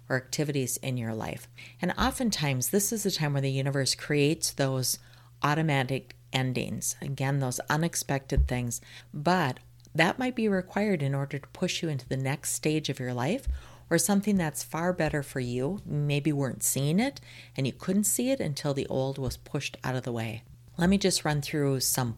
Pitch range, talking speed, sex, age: 120-155 Hz, 190 wpm, female, 40-59